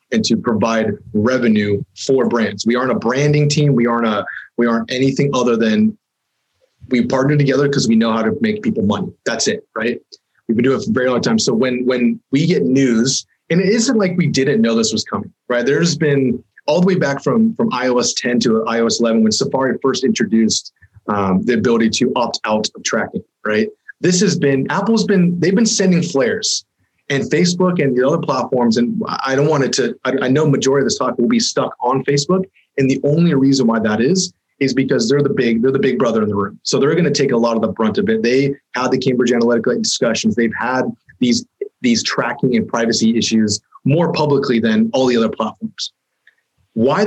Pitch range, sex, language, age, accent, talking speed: 115-180 Hz, male, English, 30-49, American, 215 wpm